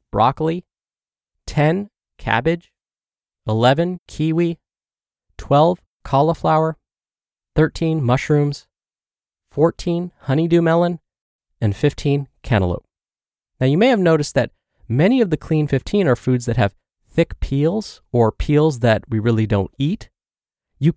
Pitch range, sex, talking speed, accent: 110-155 Hz, male, 115 wpm, American